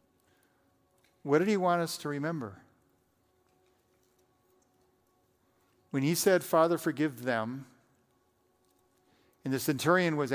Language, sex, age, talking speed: English, male, 50-69, 100 wpm